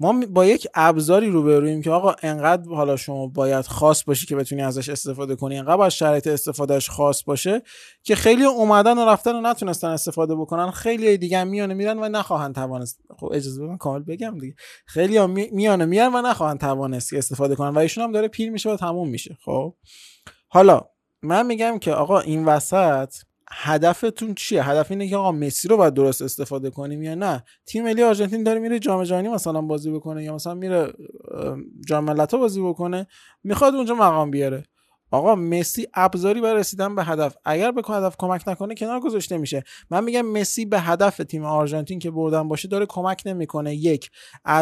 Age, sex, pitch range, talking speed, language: 20-39, male, 145-200 Hz, 180 wpm, Persian